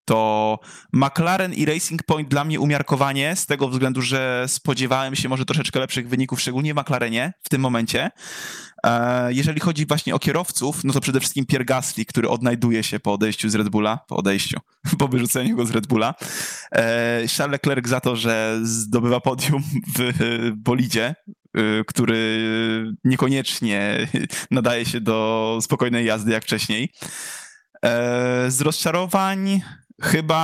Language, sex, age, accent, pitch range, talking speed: Polish, male, 20-39, native, 120-145 Hz, 140 wpm